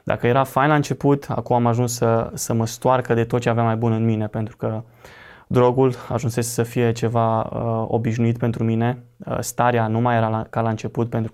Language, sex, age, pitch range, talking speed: Romanian, male, 20-39, 115-125 Hz, 220 wpm